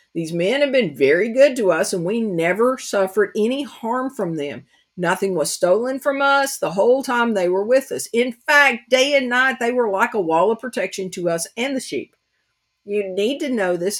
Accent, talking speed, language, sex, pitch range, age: American, 215 wpm, English, female, 175-240 Hz, 50-69